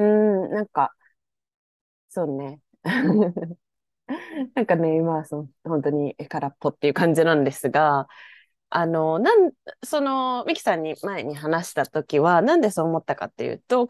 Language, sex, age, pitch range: Japanese, female, 20-39, 155-245 Hz